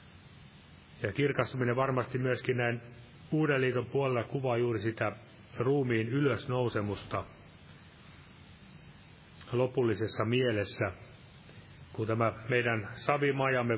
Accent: native